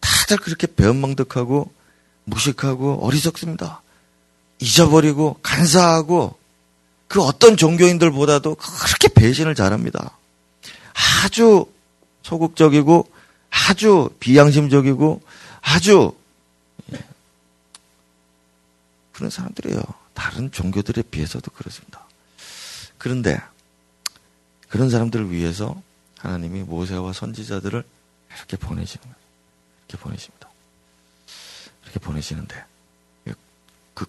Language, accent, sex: Korean, native, male